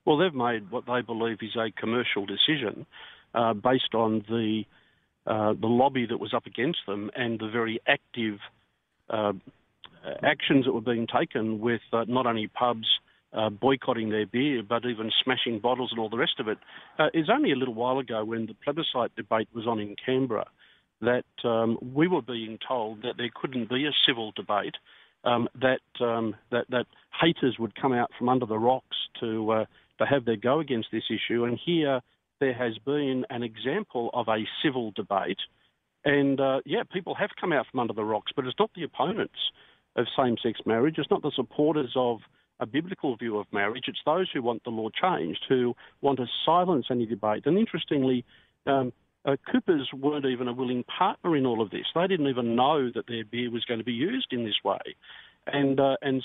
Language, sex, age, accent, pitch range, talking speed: English, male, 50-69, Australian, 115-135 Hz, 195 wpm